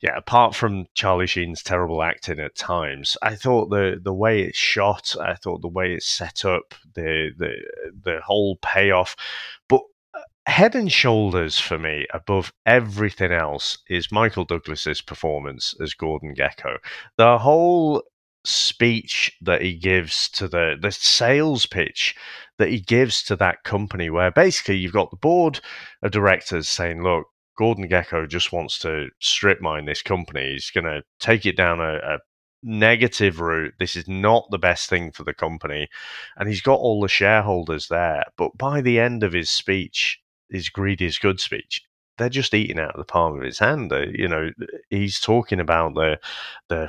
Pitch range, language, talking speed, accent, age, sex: 85-115 Hz, English, 170 wpm, British, 30-49, male